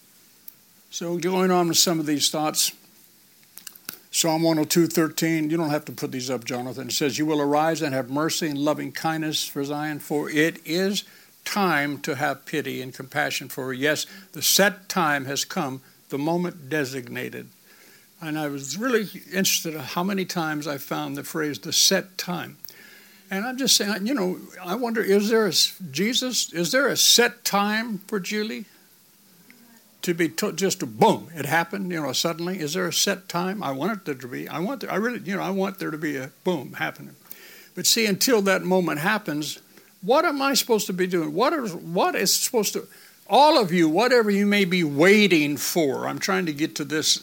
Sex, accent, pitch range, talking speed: male, American, 155-200 Hz, 200 wpm